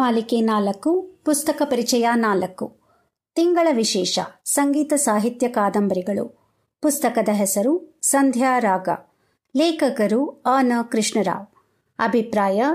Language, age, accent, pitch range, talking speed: Kannada, 50-69, native, 220-290 Hz, 85 wpm